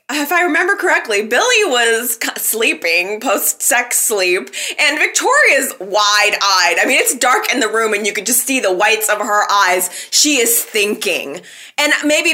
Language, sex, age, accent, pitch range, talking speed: English, female, 20-39, American, 230-355 Hz, 165 wpm